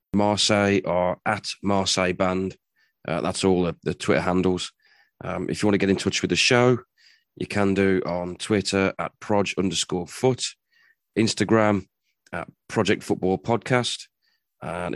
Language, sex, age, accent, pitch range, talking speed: English, male, 30-49, British, 85-100 Hz, 150 wpm